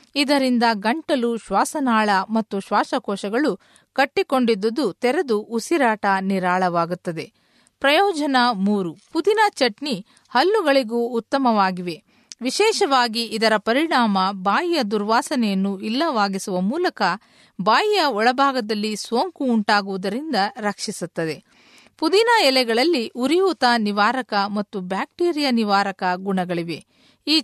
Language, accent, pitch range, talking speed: Kannada, native, 200-275 Hz, 75 wpm